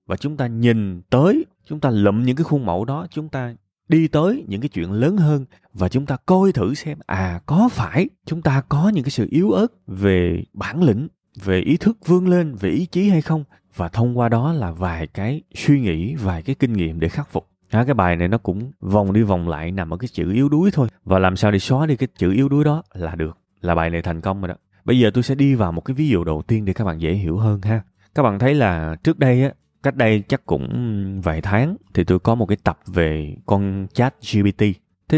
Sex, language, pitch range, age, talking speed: male, Vietnamese, 95-135 Hz, 20-39, 250 wpm